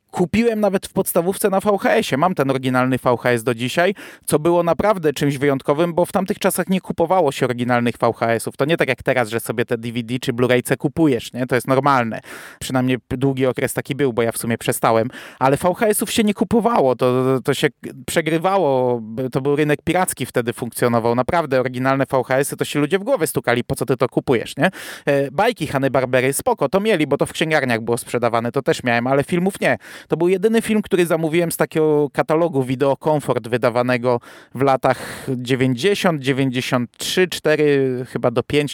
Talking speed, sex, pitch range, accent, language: 185 wpm, male, 130-170 Hz, native, Polish